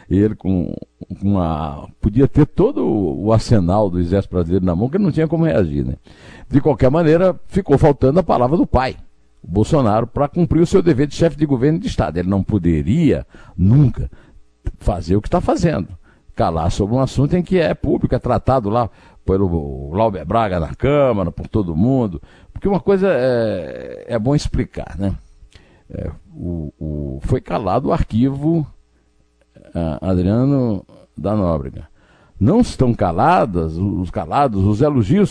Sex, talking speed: male, 165 wpm